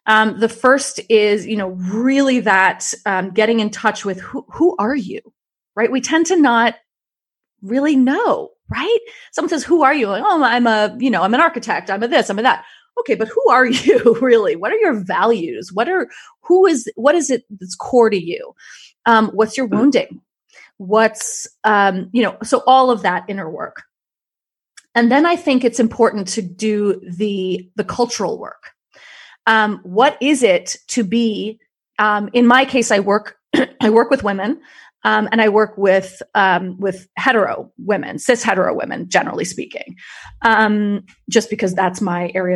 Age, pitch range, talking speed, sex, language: 30-49, 200-260 Hz, 180 wpm, female, English